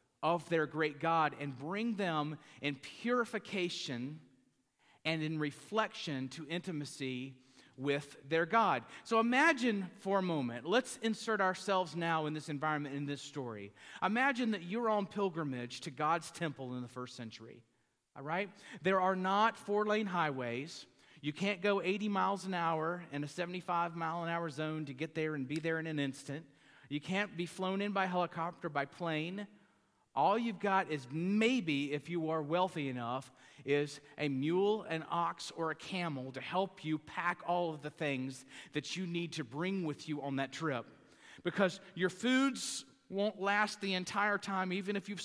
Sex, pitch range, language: male, 145-195 Hz, English